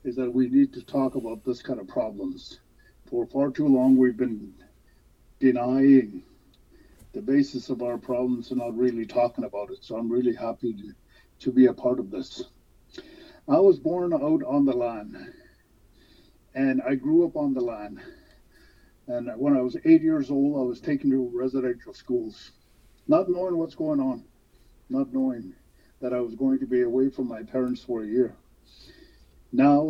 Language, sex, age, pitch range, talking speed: English, male, 50-69, 120-165 Hz, 175 wpm